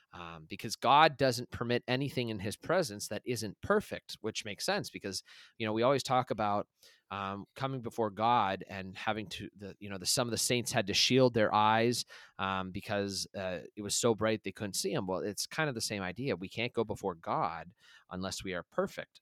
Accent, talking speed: American, 210 wpm